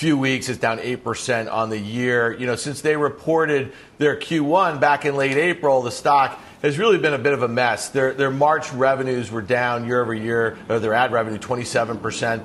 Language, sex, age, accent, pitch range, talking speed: English, male, 40-59, American, 135-165 Hz, 205 wpm